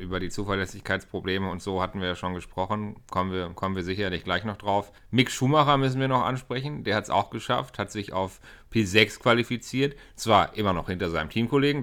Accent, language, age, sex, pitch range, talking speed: German, German, 40-59, male, 95-120 Hz, 200 wpm